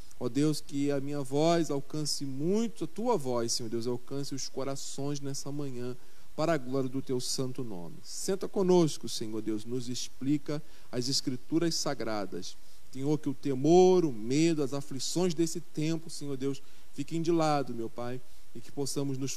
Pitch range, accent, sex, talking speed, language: 125-160 Hz, Brazilian, male, 170 wpm, Portuguese